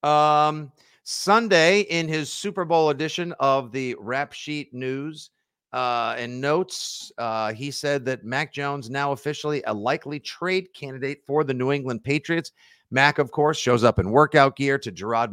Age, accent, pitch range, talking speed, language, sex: 50-69, American, 115-145 Hz, 165 wpm, English, male